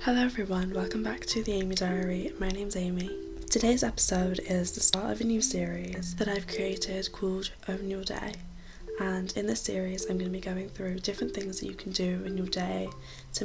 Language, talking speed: English, 210 wpm